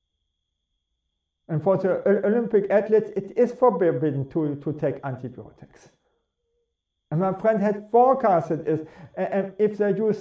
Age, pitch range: 50-69, 165-215 Hz